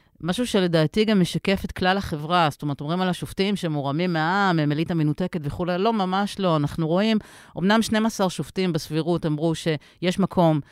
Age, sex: 40-59, female